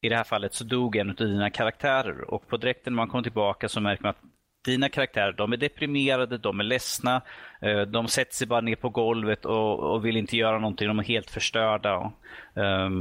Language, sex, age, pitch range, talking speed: Swedish, male, 30-49, 105-130 Hz, 210 wpm